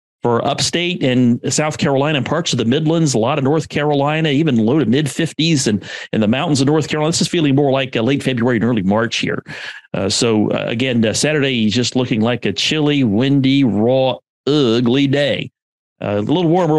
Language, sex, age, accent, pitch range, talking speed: English, male, 50-69, American, 115-140 Hz, 210 wpm